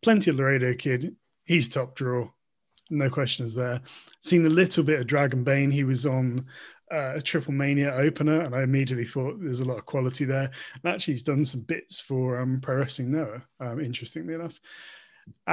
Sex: male